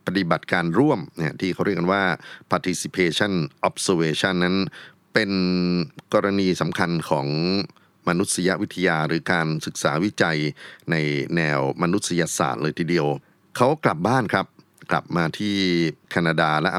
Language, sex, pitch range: Thai, male, 80-100 Hz